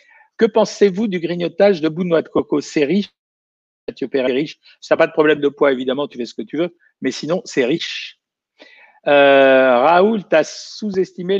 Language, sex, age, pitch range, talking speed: French, male, 60-79, 140-190 Hz, 195 wpm